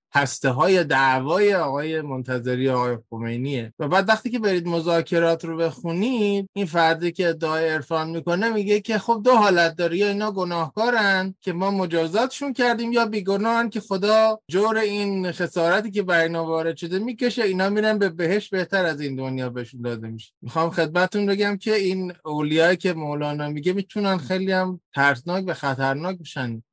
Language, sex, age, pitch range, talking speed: English, male, 20-39, 130-195 Hz, 165 wpm